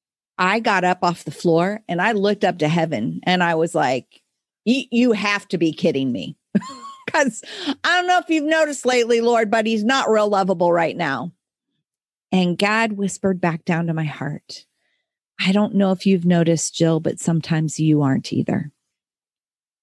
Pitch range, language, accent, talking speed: 170-215 Hz, English, American, 175 wpm